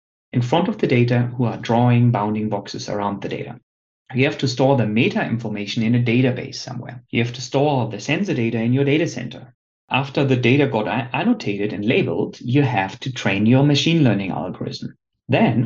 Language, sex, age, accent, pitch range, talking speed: English, male, 30-49, German, 115-140 Hz, 195 wpm